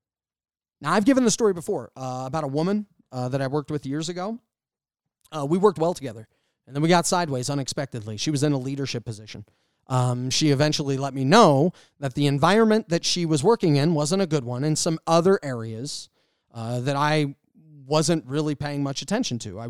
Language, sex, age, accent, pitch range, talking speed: English, male, 30-49, American, 135-185 Hz, 200 wpm